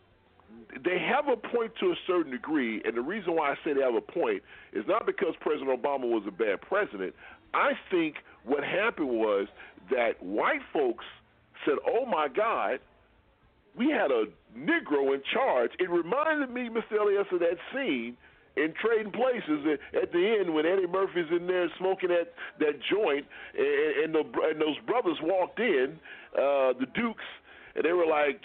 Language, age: English, 40-59